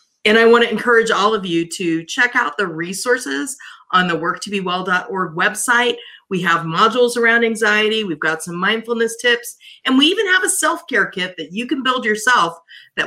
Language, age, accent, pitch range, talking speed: English, 40-59, American, 190-245 Hz, 190 wpm